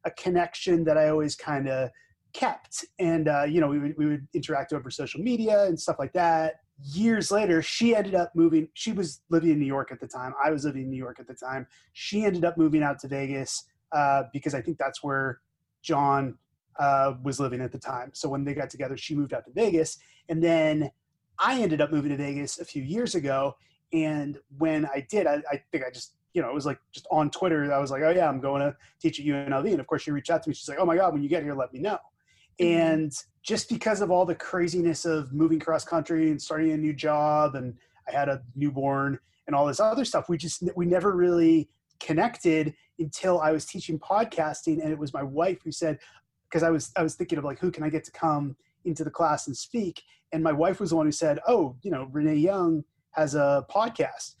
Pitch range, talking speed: 140-165 Hz, 240 wpm